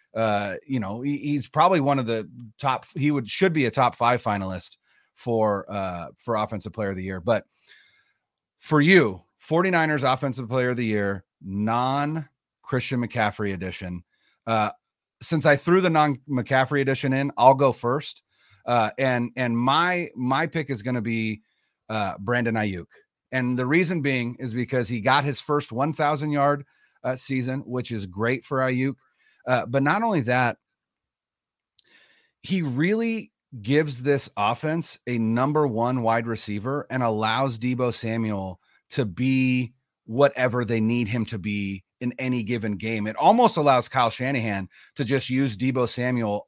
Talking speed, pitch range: 160 wpm, 115-140 Hz